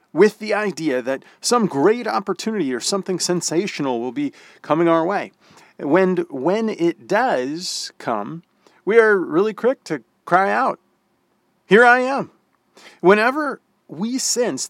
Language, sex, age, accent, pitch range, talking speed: English, male, 40-59, American, 145-210 Hz, 135 wpm